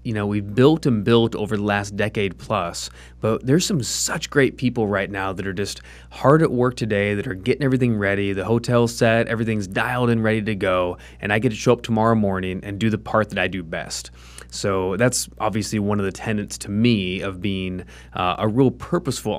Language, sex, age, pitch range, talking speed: English, male, 20-39, 95-120 Hz, 220 wpm